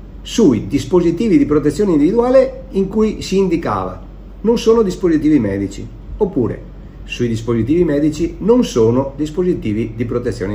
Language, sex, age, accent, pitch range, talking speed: Italian, male, 50-69, native, 105-150 Hz, 125 wpm